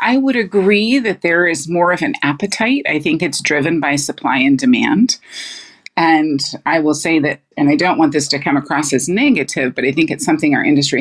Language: English